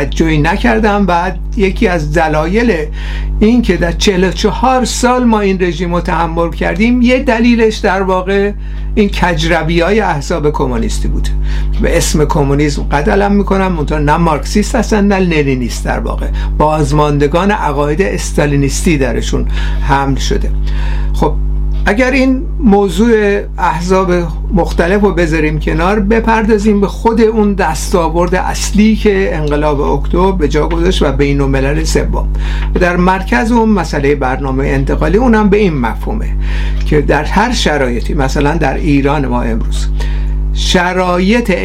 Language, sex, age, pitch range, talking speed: Persian, male, 60-79, 150-215 Hz, 130 wpm